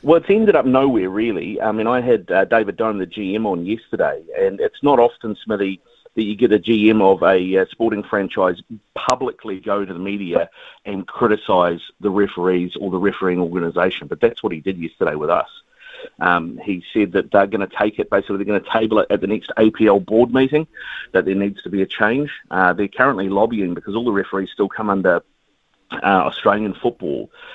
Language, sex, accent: English, male, Australian